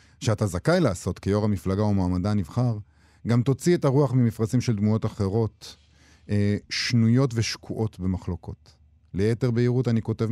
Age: 50-69